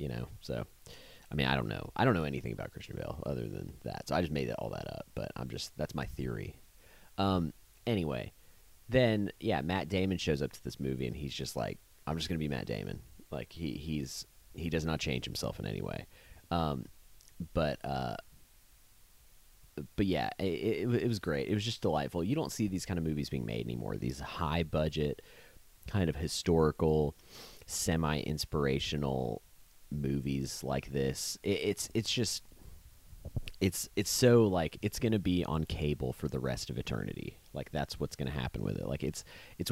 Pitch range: 70-95 Hz